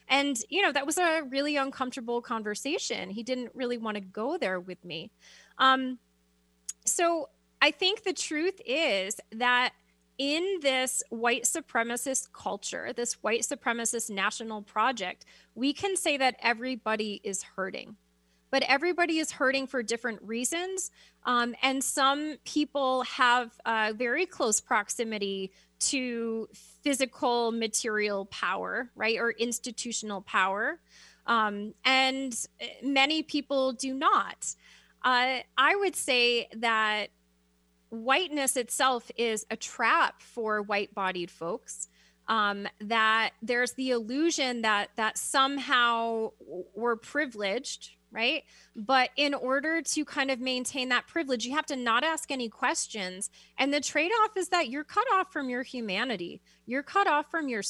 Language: English